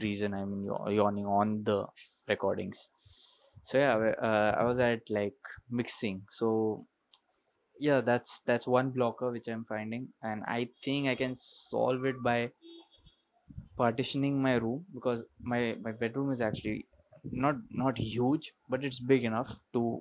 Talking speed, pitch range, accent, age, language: 145 wpm, 110-130 Hz, Indian, 20-39, English